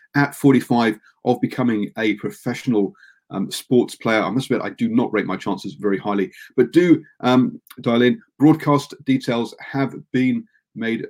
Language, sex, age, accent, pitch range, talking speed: English, male, 40-59, British, 105-135 Hz, 160 wpm